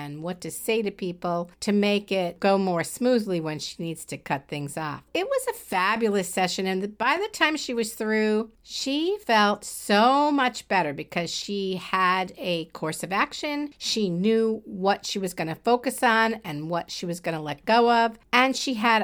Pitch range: 180-250 Hz